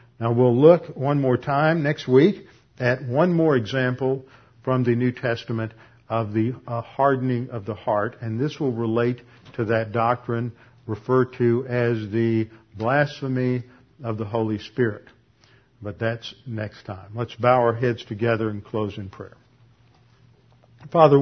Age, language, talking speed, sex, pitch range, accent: 50-69, English, 145 wpm, male, 110-125 Hz, American